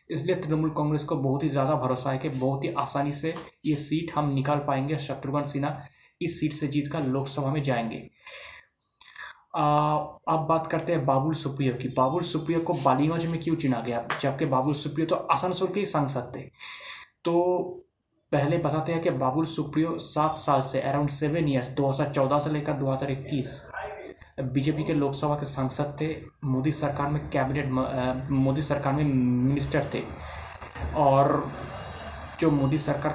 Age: 20-39